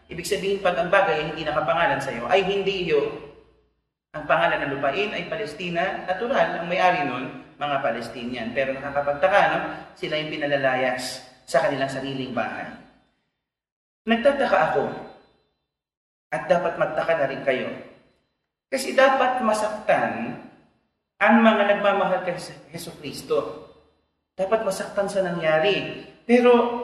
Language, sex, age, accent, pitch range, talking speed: Filipino, male, 40-59, native, 165-210 Hz, 125 wpm